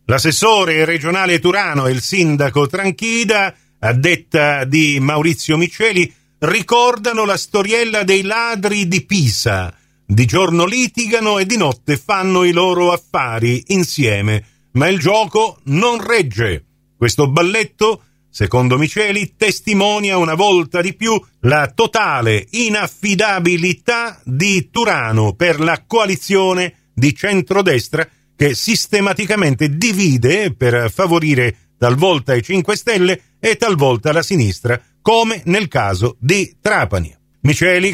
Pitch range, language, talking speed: 135-200 Hz, Italian, 115 wpm